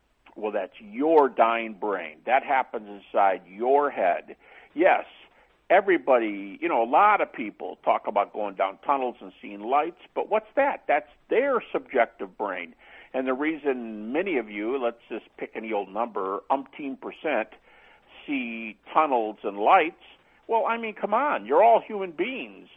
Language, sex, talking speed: English, male, 160 wpm